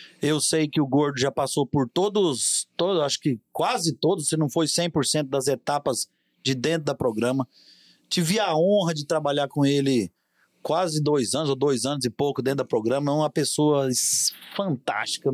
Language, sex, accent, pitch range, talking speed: Portuguese, male, Brazilian, 135-170 Hz, 180 wpm